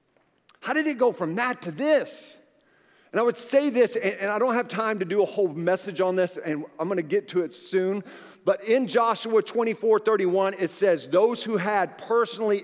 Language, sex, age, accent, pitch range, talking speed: English, male, 50-69, American, 185-240 Hz, 210 wpm